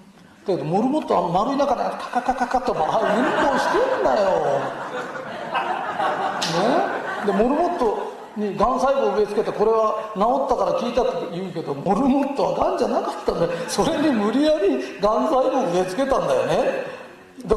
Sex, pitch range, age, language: male, 215-320 Hz, 40-59, Japanese